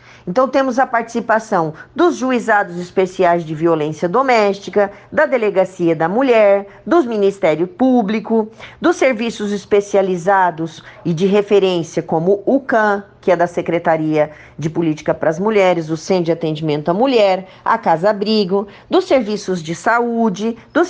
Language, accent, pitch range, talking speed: Portuguese, Brazilian, 180-235 Hz, 140 wpm